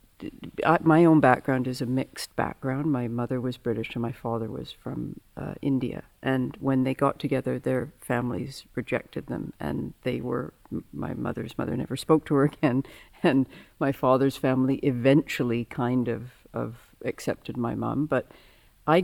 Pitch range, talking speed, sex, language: 125-155 Hz, 160 wpm, female, English